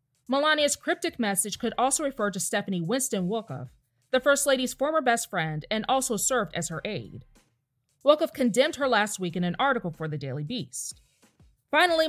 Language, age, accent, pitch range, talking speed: English, 30-49, American, 165-260 Hz, 175 wpm